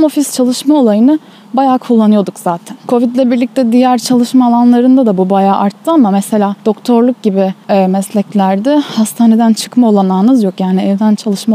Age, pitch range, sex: 10-29, 205-260 Hz, female